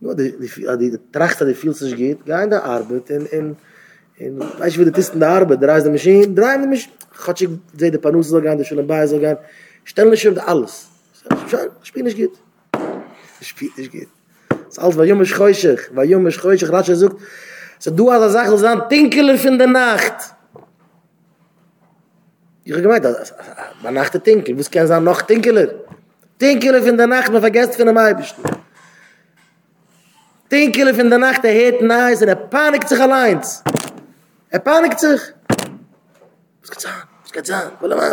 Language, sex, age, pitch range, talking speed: English, male, 20-39, 160-235 Hz, 95 wpm